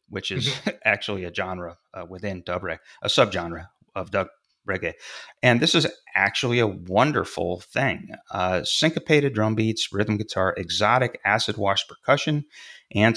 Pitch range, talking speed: 90-110 Hz, 145 wpm